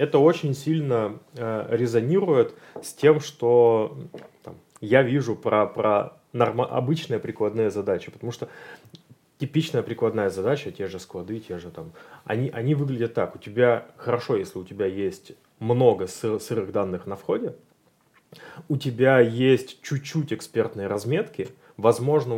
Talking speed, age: 135 wpm, 20-39